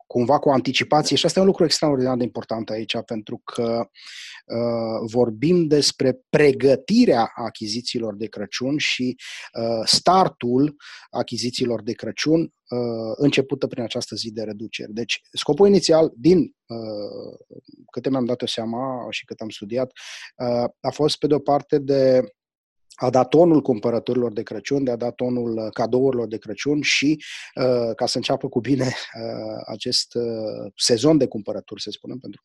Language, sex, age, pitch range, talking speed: Romanian, male, 20-39, 115-150 Hz, 145 wpm